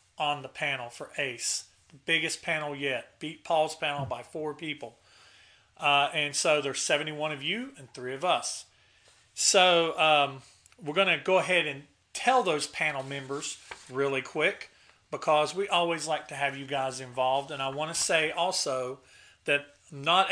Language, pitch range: English, 135-165 Hz